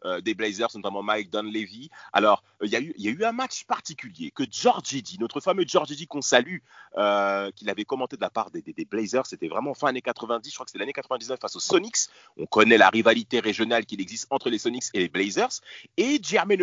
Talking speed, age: 235 wpm, 30-49